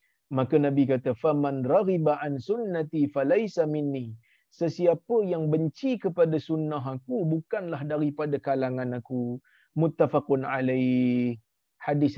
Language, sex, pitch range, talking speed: Malayalam, male, 140-180 Hz, 110 wpm